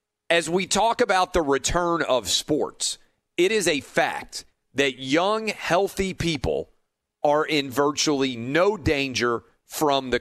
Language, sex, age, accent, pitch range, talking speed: English, male, 40-59, American, 130-175 Hz, 135 wpm